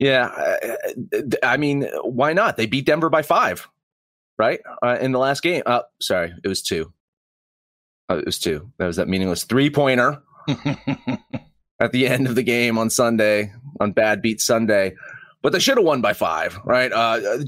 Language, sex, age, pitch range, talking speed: English, male, 30-49, 100-145 Hz, 170 wpm